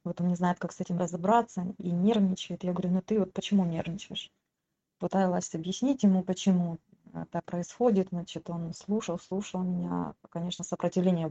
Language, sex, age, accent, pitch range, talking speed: Russian, female, 20-39, native, 170-195 Hz, 165 wpm